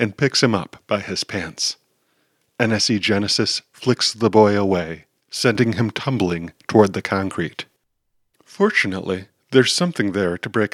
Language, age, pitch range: English, 40-59, 100-120 Hz